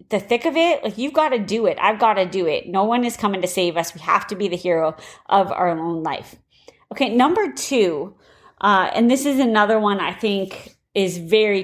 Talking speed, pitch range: 230 wpm, 180-225 Hz